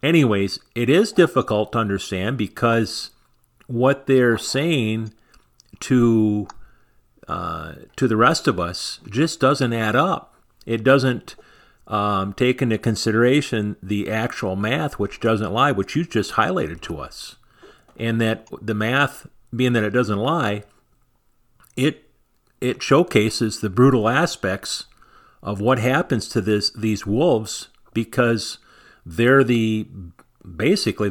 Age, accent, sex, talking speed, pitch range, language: 50-69, American, male, 125 wpm, 105-130 Hz, English